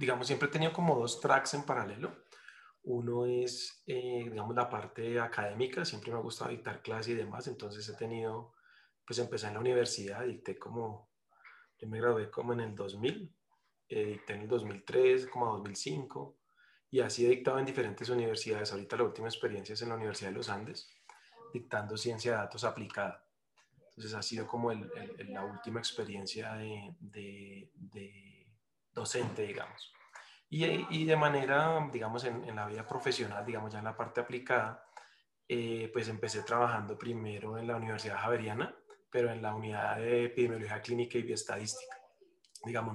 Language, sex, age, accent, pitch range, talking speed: Spanish, male, 30-49, Colombian, 105-120 Hz, 170 wpm